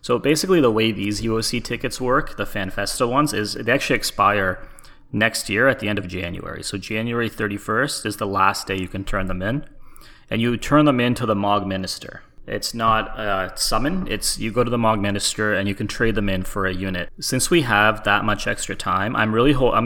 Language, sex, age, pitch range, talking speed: English, male, 30-49, 100-120 Hz, 225 wpm